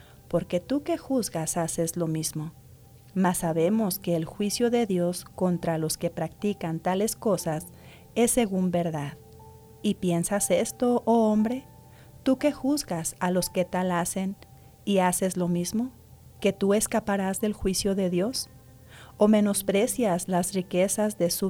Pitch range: 165-210 Hz